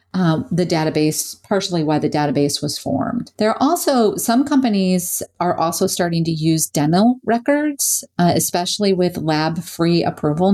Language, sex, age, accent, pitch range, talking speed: English, female, 40-59, American, 155-190 Hz, 155 wpm